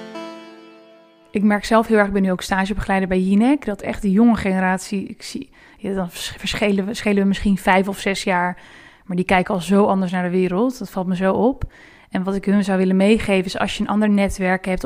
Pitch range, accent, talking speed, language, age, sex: 190-220 Hz, Dutch, 230 wpm, English, 20-39, female